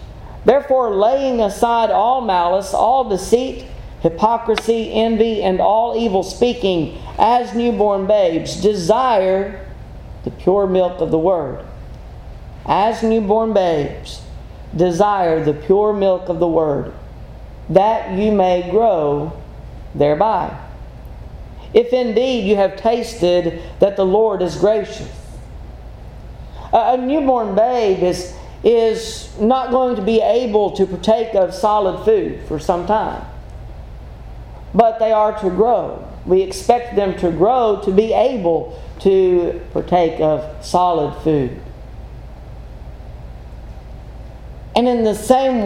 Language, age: English, 40-59